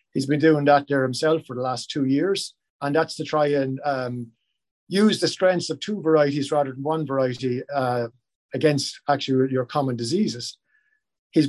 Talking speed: 180 wpm